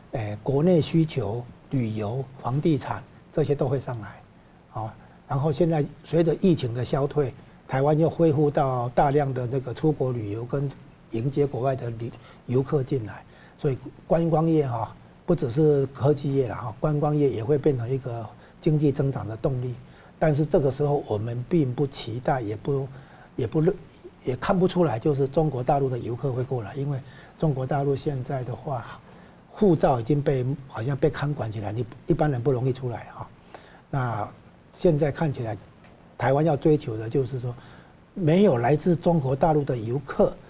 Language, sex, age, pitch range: Chinese, male, 60-79, 130-155 Hz